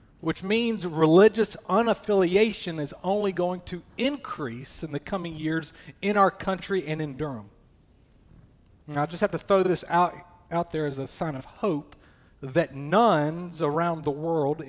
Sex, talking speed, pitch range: male, 160 wpm, 145-190 Hz